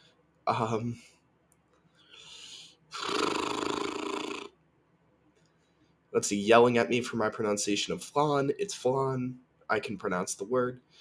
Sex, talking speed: male, 100 wpm